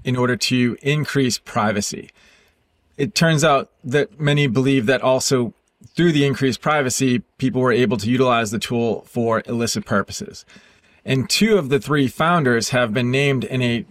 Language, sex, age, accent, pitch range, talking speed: English, male, 40-59, American, 120-140 Hz, 165 wpm